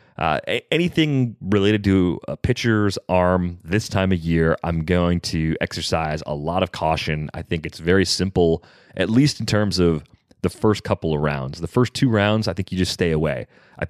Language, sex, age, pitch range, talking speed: English, male, 30-49, 85-100 Hz, 195 wpm